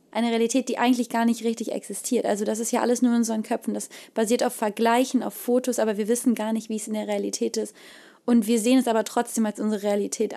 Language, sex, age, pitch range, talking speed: German, female, 20-39, 215-235 Hz, 250 wpm